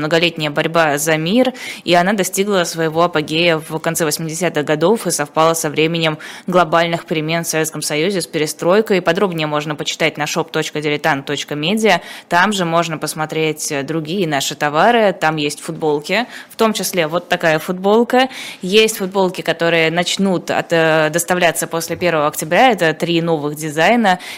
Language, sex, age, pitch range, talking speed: Russian, female, 20-39, 160-200 Hz, 145 wpm